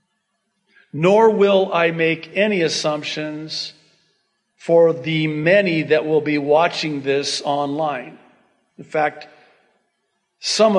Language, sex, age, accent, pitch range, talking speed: English, male, 50-69, American, 130-160 Hz, 100 wpm